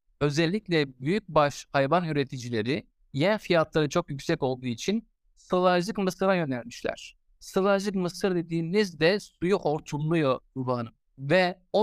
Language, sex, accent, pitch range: Turkish, male, native, 145-190 Hz